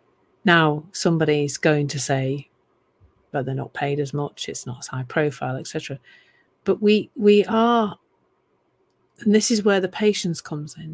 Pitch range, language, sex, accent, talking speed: 150-185 Hz, English, female, British, 165 wpm